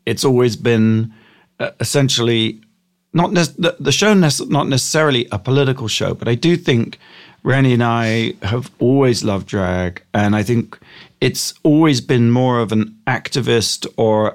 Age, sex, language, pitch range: 40-59, male, English, 110-150 Hz